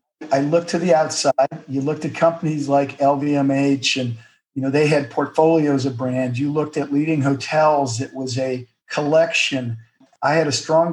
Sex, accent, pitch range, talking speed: male, American, 135-155 Hz, 175 wpm